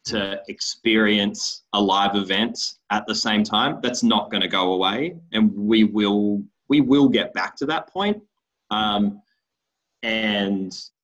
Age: 20-39